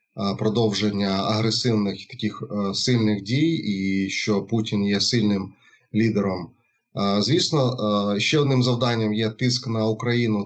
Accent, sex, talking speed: native, male, 110 wpm